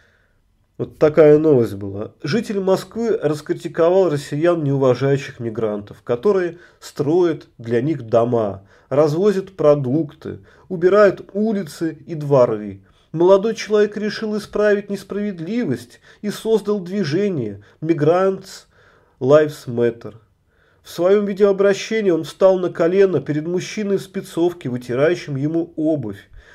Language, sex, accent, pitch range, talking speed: Russian, male, native, 140-210 Hz, 100 wpm